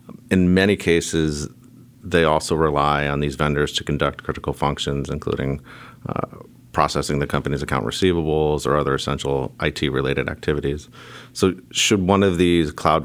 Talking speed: 145 wpm